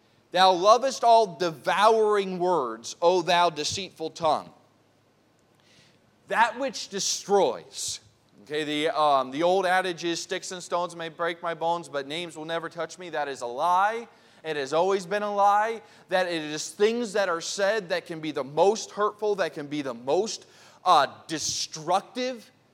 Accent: American